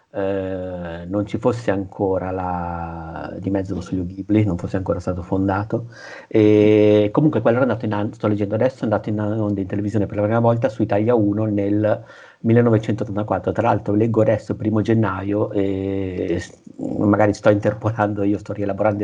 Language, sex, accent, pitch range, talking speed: Italian, male, native, 95-110 Hz, 175 wpm